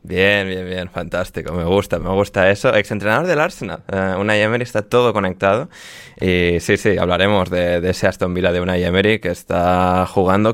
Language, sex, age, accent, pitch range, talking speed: Spanish, male, 20-39, Spanish, 100-115 Hz, 190 wpm